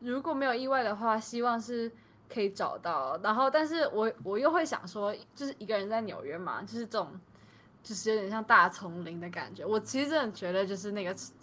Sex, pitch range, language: female, 185-240 Hz, Chinese